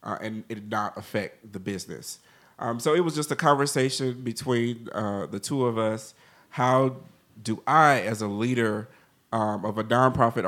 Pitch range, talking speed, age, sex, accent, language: 105-120 Hz, 180 wpm, 40-59, male, American, English